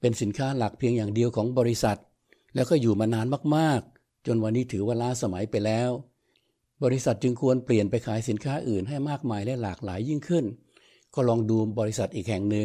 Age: 60-79